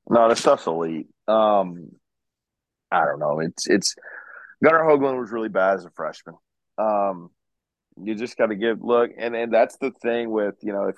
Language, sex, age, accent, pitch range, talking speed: English, male, 30-49, American, 95-120 Hz, 170 wpm